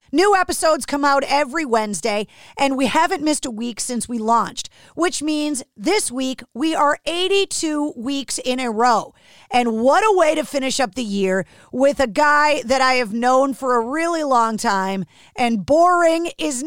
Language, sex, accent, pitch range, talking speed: English, female, American, 245-335 Hz, 180 wpm